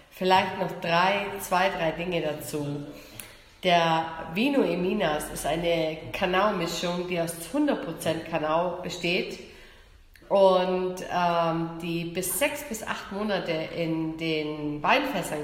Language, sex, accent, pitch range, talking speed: German, female, German, 160-195 Hz, 115 wpm